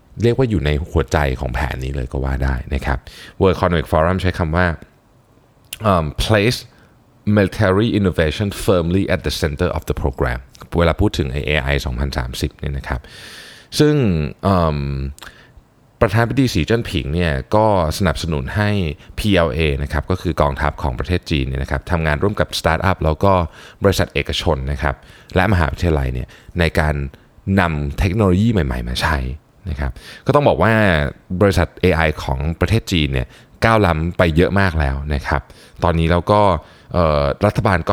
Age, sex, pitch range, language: 20-39, male, 75-100 Hz, Thai